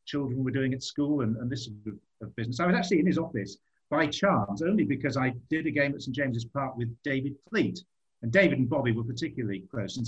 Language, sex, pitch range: English, male, 115-145 Hz